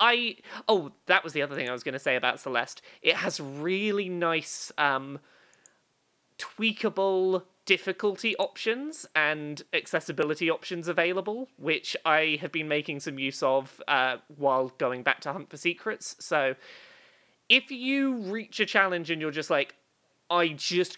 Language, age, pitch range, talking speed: English, 20-39, 145-210 Hz, 155 wpm